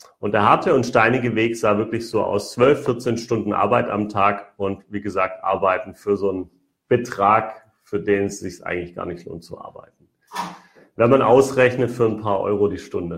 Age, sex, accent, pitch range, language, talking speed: 40-59, male, German, 100-130 Hz, German, 195 wpm